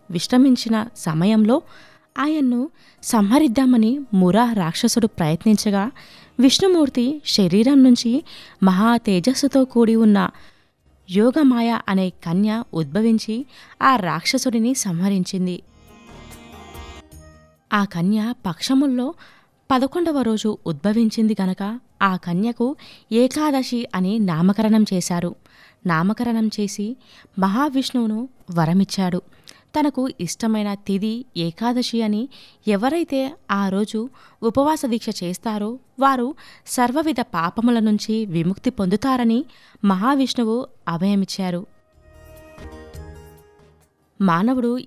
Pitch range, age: 185-250 Hz, 20-39